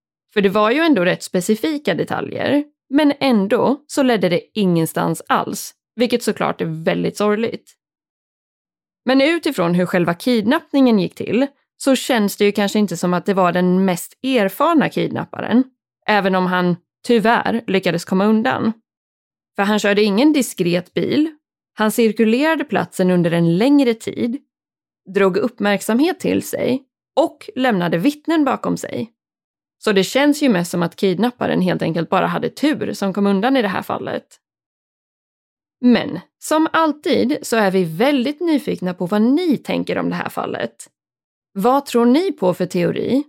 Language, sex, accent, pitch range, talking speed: Swedish, female, native, 185-275 Hz, 155 wpm